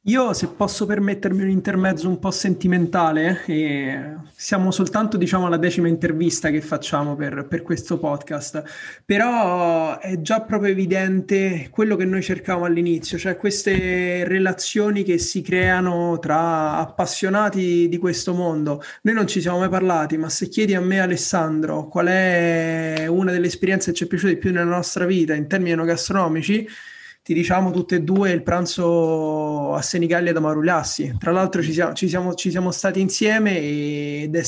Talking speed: 165 wpm